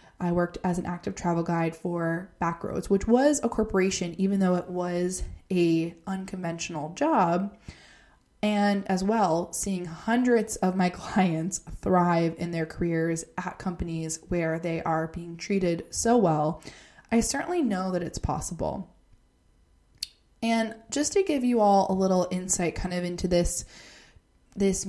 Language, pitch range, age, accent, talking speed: English, 170-215 Hz, 20-39, American, 145 wpm